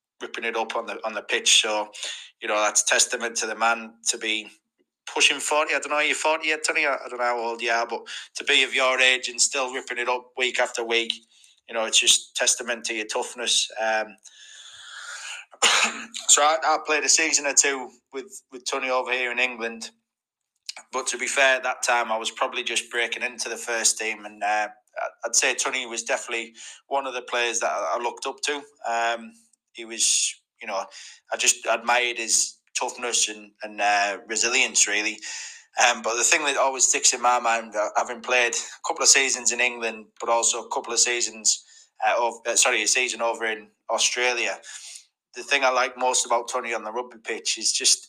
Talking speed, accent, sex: 210 wpm, British, male